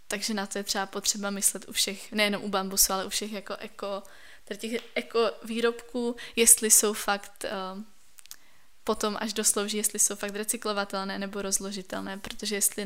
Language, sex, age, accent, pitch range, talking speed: Czech, female, 10-29, native, 200-215 Hz, 165 wpm